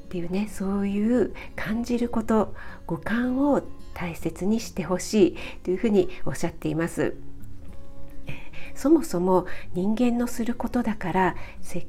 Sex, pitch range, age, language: female, 175-220 Hz, 50-69, Japanese